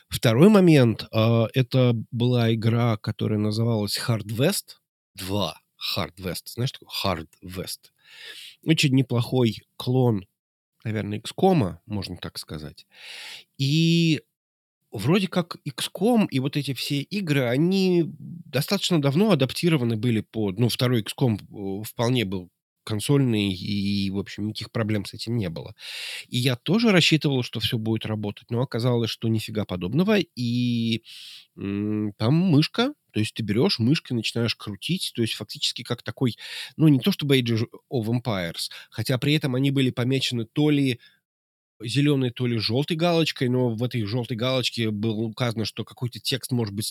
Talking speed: 150 wpm